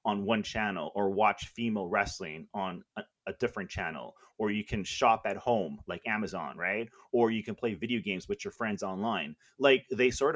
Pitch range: 110-135 Hz